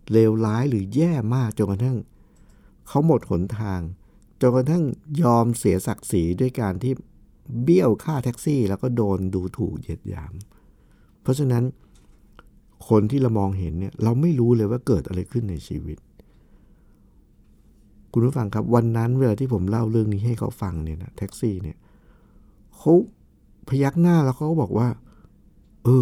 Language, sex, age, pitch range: Thai, male, 60-79, 105-140 Hz